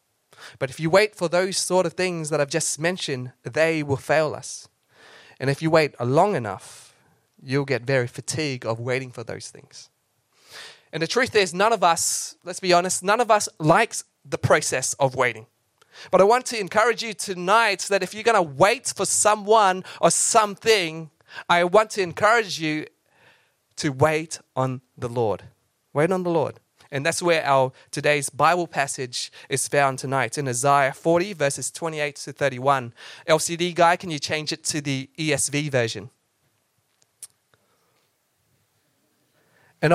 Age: 20-39